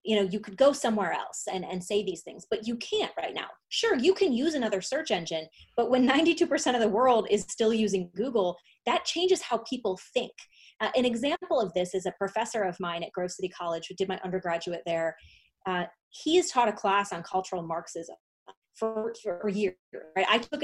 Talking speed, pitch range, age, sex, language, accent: 210 wpm, 190-245 Hz, 20-39, female, English, American